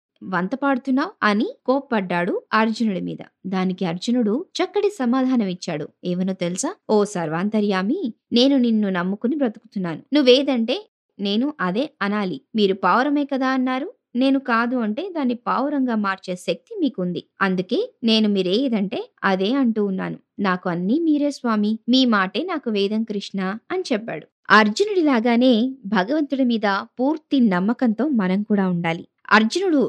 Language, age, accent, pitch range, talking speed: Telugu, 20-39, native, 190-255 Hz, 120 wpm